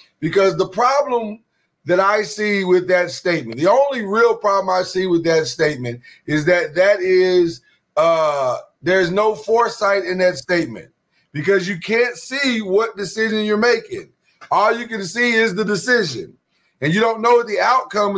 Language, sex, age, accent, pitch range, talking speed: English, male, 30-49, American, 180-225 Hz, 170 wpm